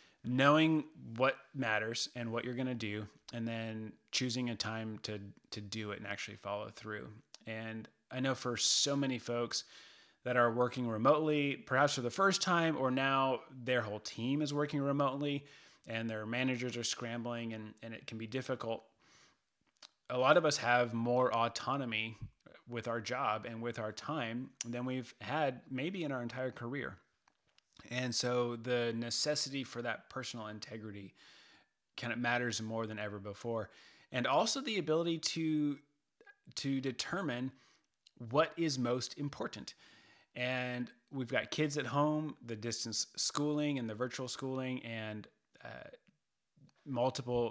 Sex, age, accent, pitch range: male, 30-49, American, 115-140 Hz